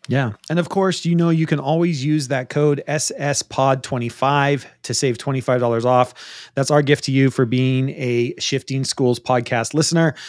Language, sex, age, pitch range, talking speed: English, male, 30-49, 130-165 Hz, 180 wpm